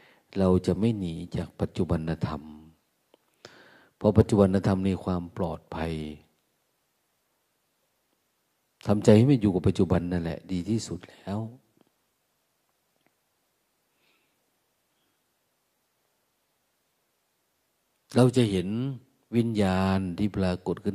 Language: Thai